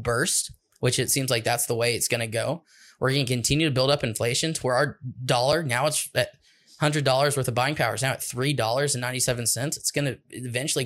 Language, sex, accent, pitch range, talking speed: English, male, American, 120-150 Hz, 250 wpm